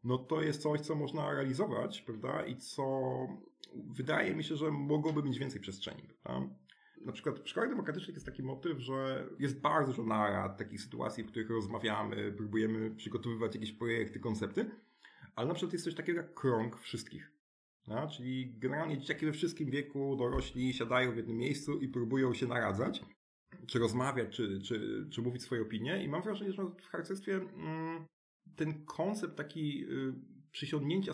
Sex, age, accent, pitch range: male, 30-49, native, 120-155 Hz